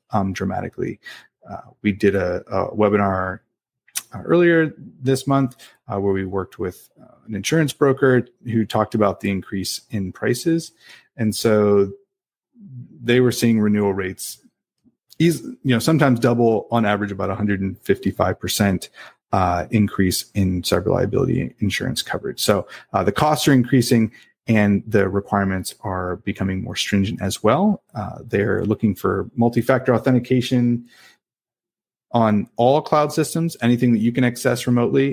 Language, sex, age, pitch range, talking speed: English, male, 30-49, 100-130 Hz, 140 wpm